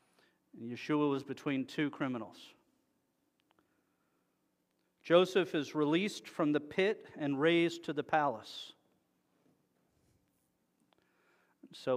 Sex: male